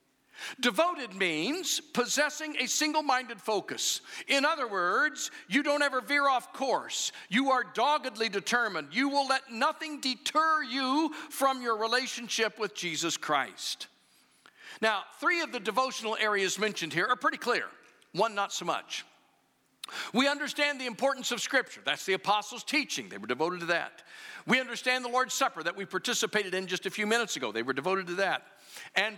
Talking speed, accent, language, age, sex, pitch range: 165 wpm, American, English, 50-69, male, 200-275 Hz